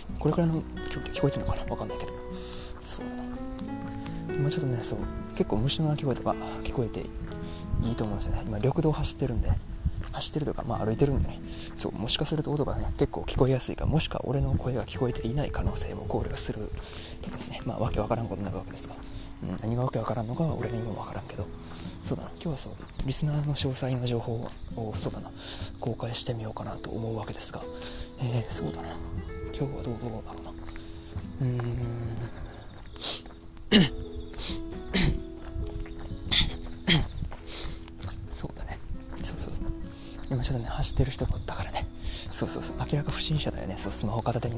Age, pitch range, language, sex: 20-39, 85-125 Hz, Japanese, male